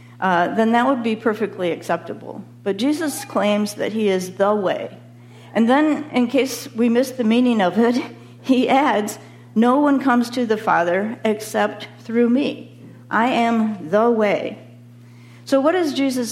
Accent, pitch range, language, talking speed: American, 190-260 Hz, English, 160 wpm